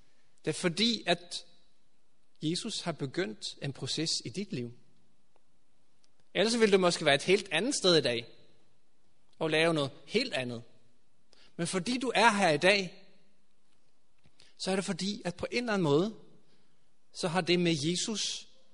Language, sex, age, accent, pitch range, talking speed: Danish, male, 30-49, native, 145-195 Hz, 160 wpm